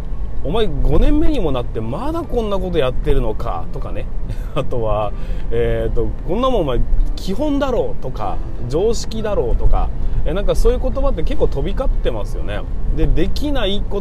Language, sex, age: Japanese, male, 30-49